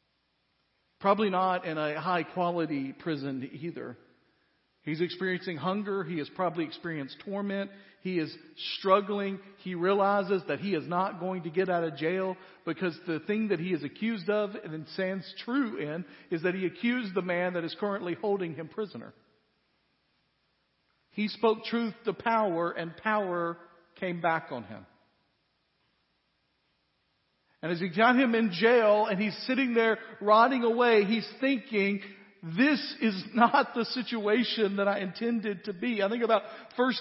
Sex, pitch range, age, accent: male, 185-235 Hz, 50-69, American